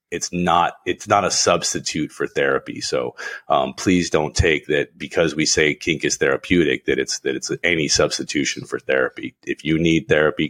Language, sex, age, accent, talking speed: English, male, 30-49, American, 185 wpm